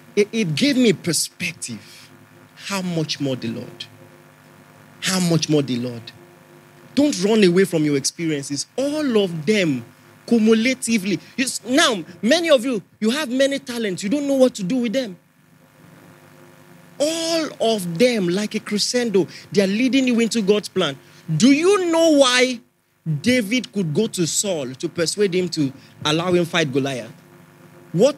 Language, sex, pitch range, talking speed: English, male, 160-240 Hz, 155 wpm